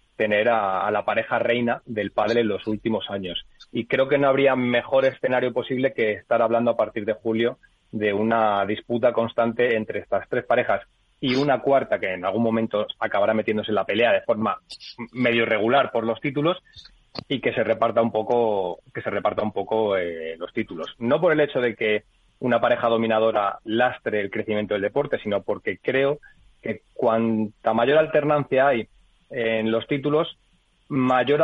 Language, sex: Spanish, male